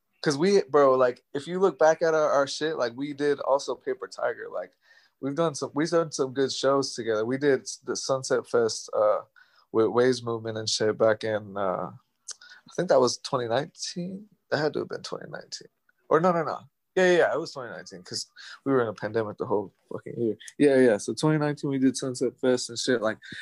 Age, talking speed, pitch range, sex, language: 20-39, 215 wpm, 115-145 Hz, male, English